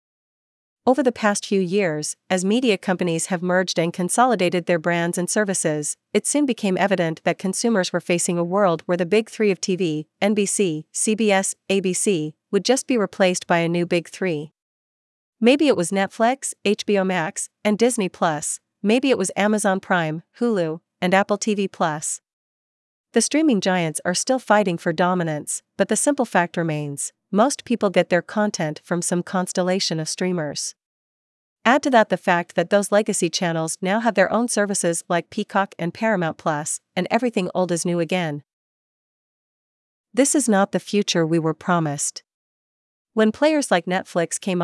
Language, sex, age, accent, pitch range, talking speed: English, female, 40-59, American, 170-210 Hz, 165 wpm